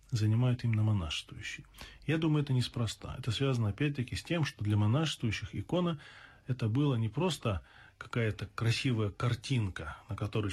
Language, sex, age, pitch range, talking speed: Russian, male, 20-39, 100-125 Hz, 140 wpm